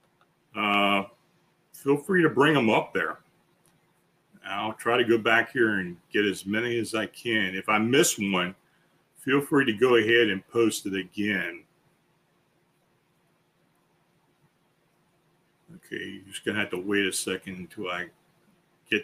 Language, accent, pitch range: English, American, 105-170 Hz